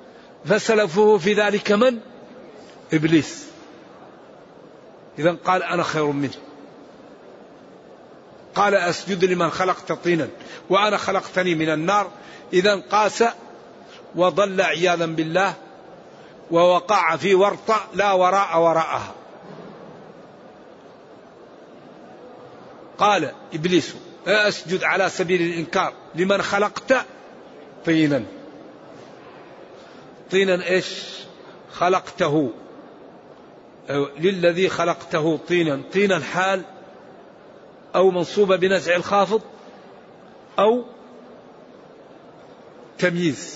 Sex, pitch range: male, 170-200 Hz